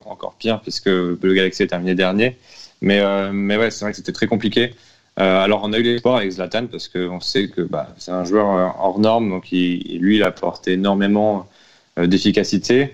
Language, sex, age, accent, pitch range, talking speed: French, male, 20-39, French, 95-110 Hz, 195 wpm